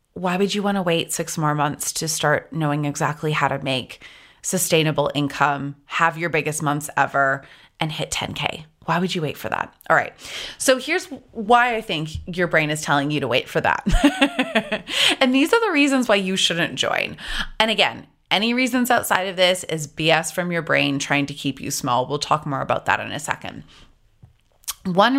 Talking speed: 200 wpm